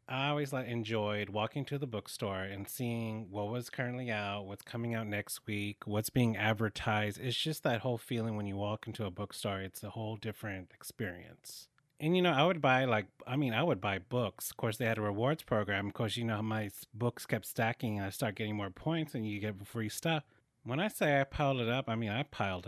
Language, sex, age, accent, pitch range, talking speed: English, male, 30-49, American, 105-125 Hz, 235 wpm